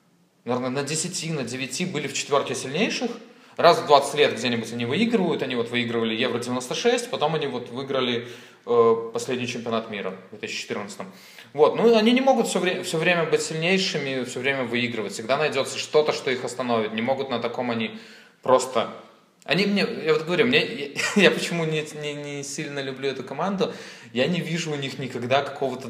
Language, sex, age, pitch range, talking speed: Russian, male, 20-39, 120-170 Hz, 185 wpm